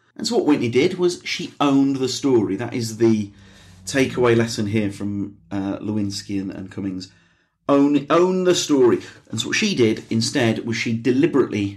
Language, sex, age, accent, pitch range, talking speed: English, male, 40-59, British, 105-130 Hz, 180 wpm